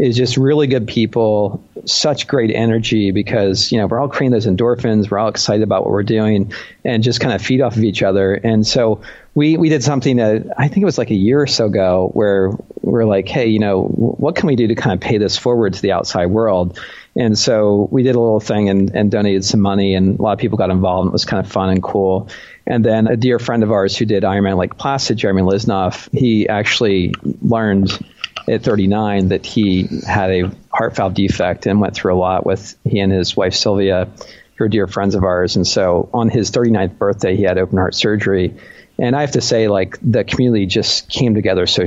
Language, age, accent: English, 40-59, American